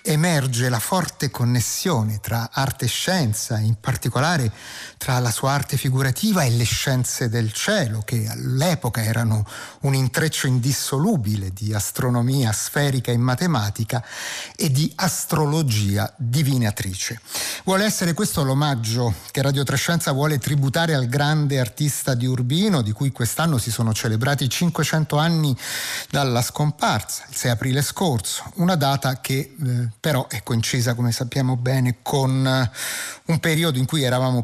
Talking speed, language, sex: 140 wpm, Italian, male